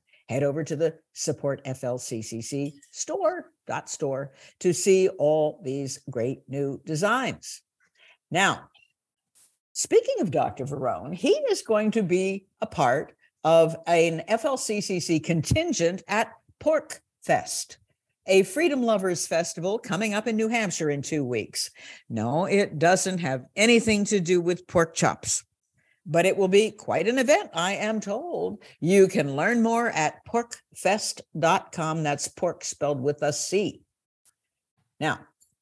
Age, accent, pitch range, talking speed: 60-79, American, 150-215 Hz, 130 wpm